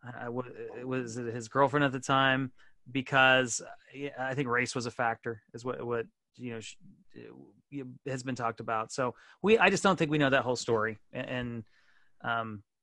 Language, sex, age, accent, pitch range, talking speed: English, male, 30-49, American, 120-145 Hz, 170 wpm